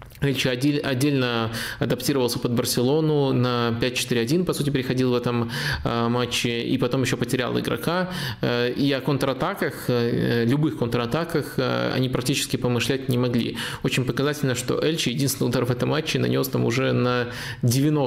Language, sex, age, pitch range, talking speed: Russian, male, 20-39, 120-140 Hz, 140 wpm